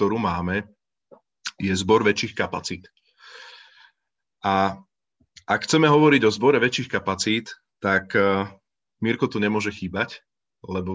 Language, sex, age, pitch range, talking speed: Slovak, male, 30-49, 95-110 Hz, 110 wpm